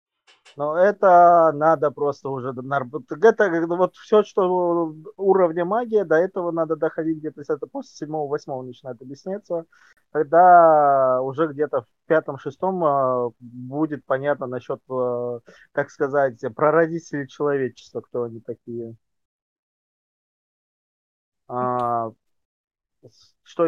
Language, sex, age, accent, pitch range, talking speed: Russian, male, 20-39, native, 125-160 Hz, 100 wpm